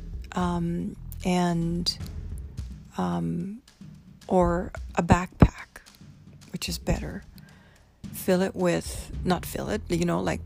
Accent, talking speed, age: American, 105 wpm, 40-59